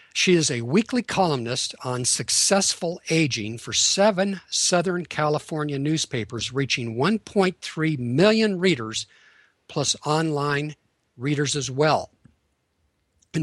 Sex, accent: male, American